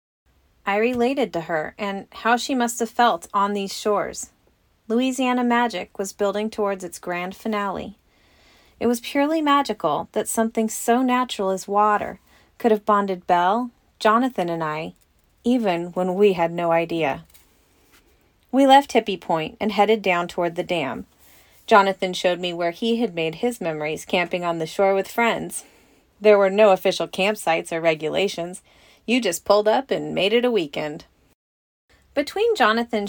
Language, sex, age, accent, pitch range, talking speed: English, female, 30-49, American, 180-235 Hz, 160 wpm